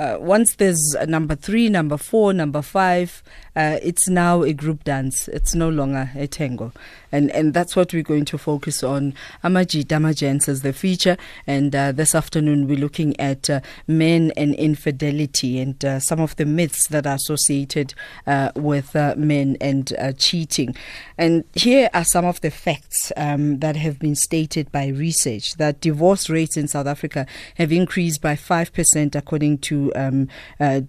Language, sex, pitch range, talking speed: English, female, 140-170 Hz, 175 wpm